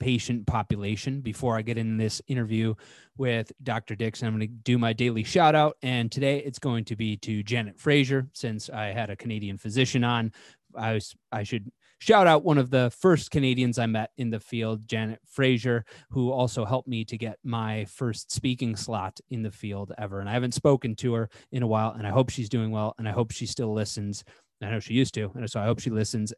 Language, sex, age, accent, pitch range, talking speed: English, male, 30-49, American, 110-125 Hz, 225 wpm